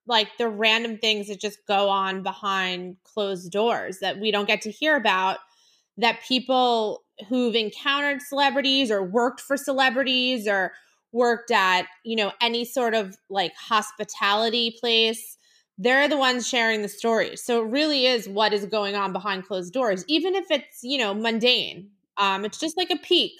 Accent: American